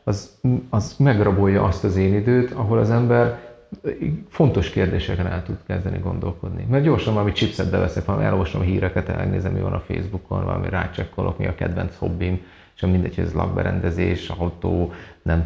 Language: Hungarian